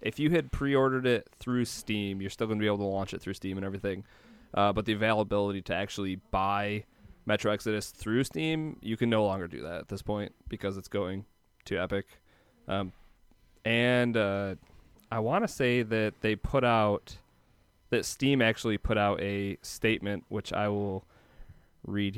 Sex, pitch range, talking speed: male, 100-120 Hz, 180 wpm